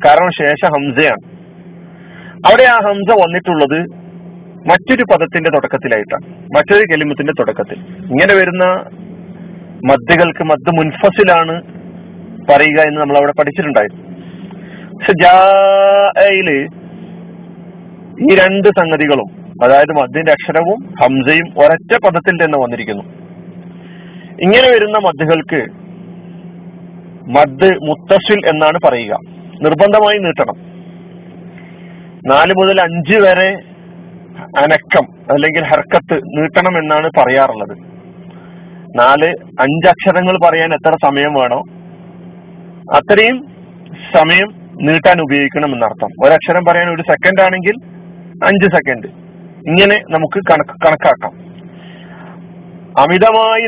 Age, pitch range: 40-59, 165-185 Hz